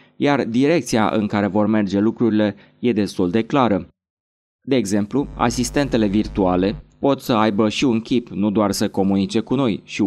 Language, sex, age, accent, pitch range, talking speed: Romanian, male, 20-39, native, 100-120 Hz, 165 wpm